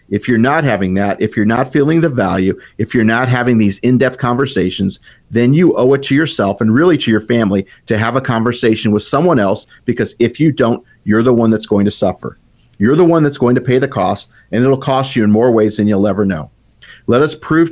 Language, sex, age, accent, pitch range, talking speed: English, male, 40-59, American, 110-130 Hz, 235 wpm